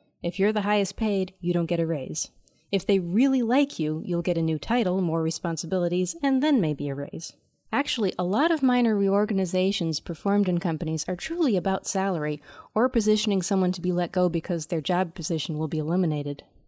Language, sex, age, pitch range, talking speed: English, female, 30-49, 165-210 Hz, 195 wpm